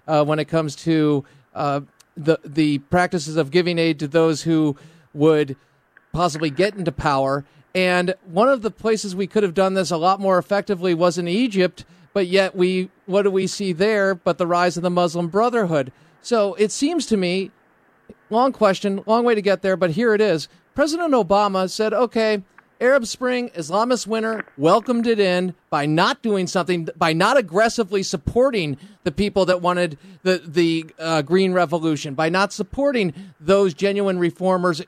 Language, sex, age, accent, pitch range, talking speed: English, male, 40-59, American, 165-205 Hz, 175 wpm